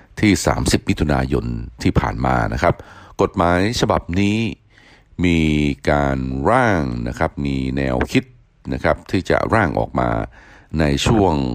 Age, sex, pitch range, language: 60-79, male, 65-90 Hz, Thai